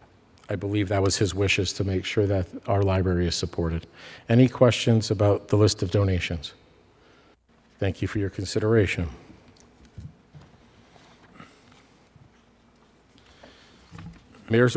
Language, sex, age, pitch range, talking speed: English, male, 50-69, 100-125 Hz, 110 wpm